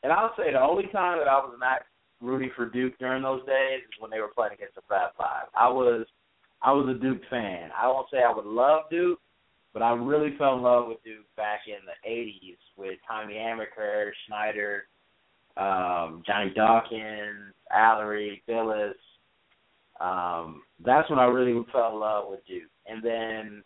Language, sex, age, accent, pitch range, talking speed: English, male, 30-49, American, 105-135 Hz, 180 wpm